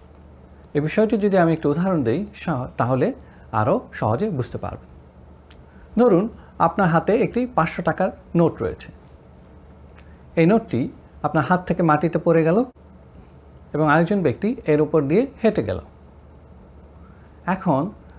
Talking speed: 110 wpm